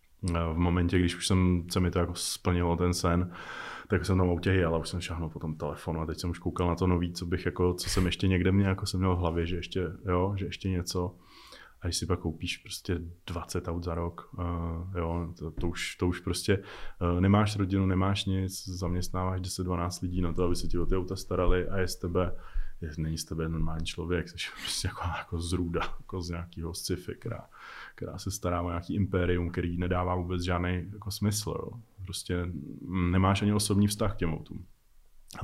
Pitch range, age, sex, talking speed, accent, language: 90-105 Hz, 20-39, male, 215 wpm, native, Czech